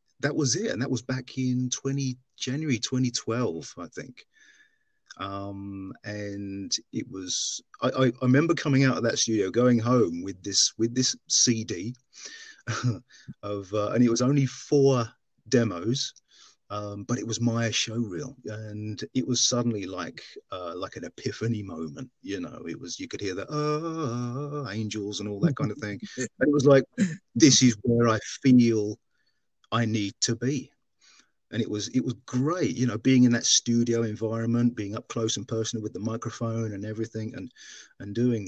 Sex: male